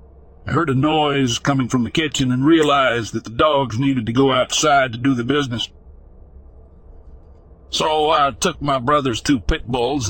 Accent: American